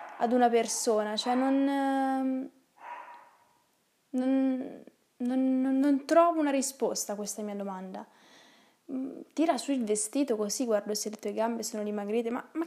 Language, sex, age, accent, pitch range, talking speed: Italian, female, 10-29, native, 210-260 Hz, 135 wpm